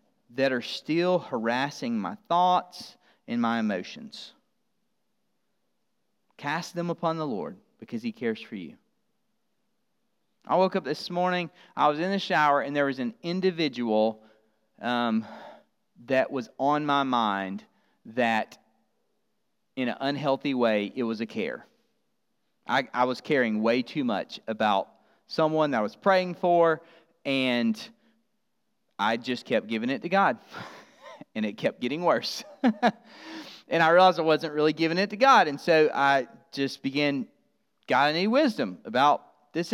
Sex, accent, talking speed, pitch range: male, American, 145 wpm, 135-225 Hz